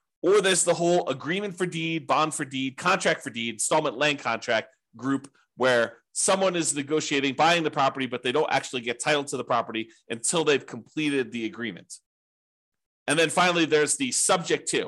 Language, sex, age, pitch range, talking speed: English, male, 30-49, 125-165 Hz, 180 wpm